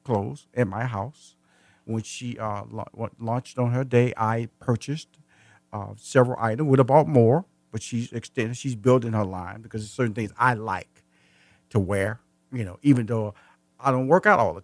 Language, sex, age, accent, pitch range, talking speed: English, male, 50-69, American, 110-155 Hz, 185 wpm